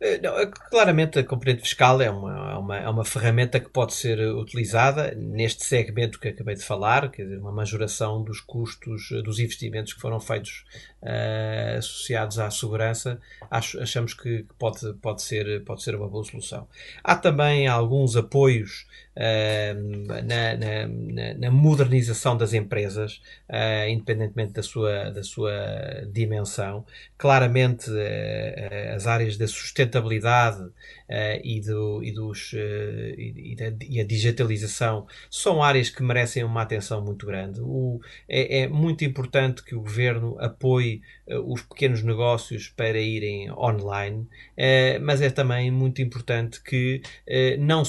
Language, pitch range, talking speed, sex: Portuguese, 110-130 Hz, 135 wpm, male